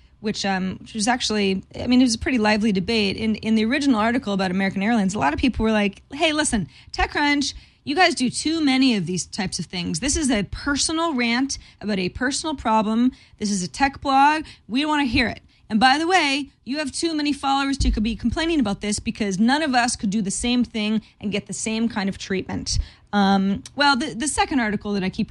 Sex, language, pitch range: female, English, 205-275 Hz